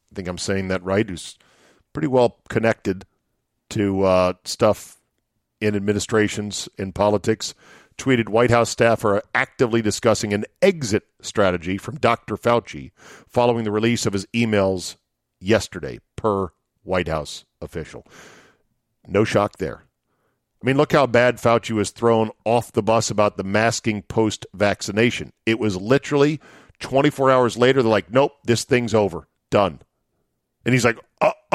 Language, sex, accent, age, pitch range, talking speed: English, male, American, 50-69, 105-130 Hz, 145 wpm